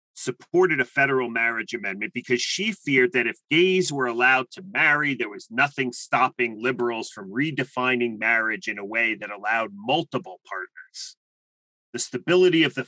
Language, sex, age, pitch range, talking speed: English, male, 30-49, 125-155 Hz, 160 wpm